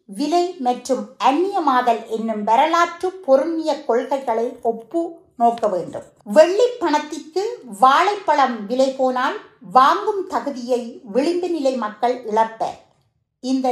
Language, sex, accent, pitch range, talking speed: Tamil, female, native, 230-310 Hz, 95 wpm